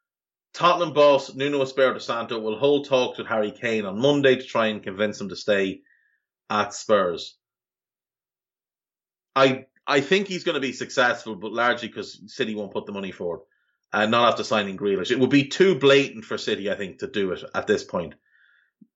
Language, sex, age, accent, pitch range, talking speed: English, male, 30-49, Irish, 110-140 Hz, 185 wpm